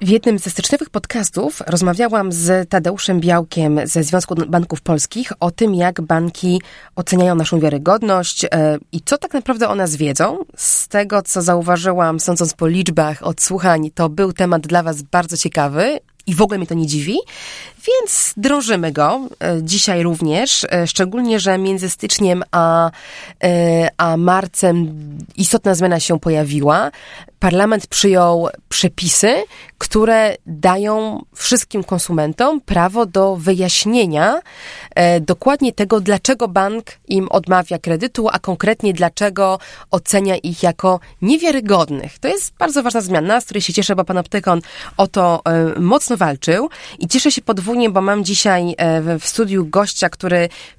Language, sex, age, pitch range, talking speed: Polish, female, 20-39, 170-210 Hz, 145 wpm